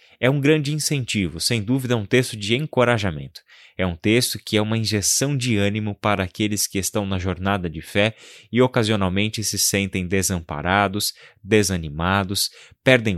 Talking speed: 160 wpm